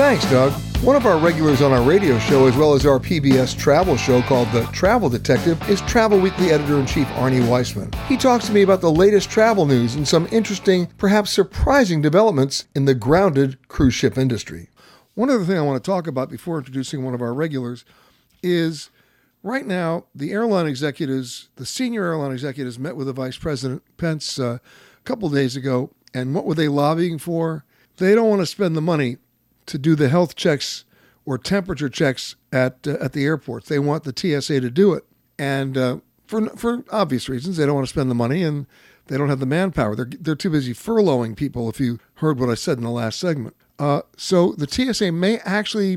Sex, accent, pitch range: male, American, 135-190 Hz